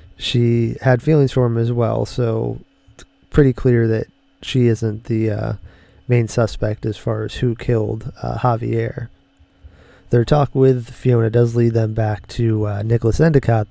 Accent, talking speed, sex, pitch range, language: American, 160 wpm, male, 110-125 Hz, English